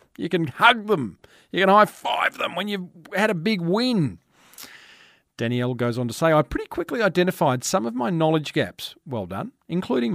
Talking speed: 185 wpm